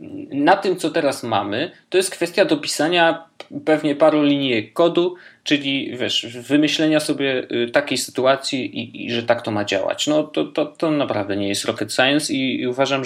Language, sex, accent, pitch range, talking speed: Polish, male, native, 115-155 Hz, 175 wpm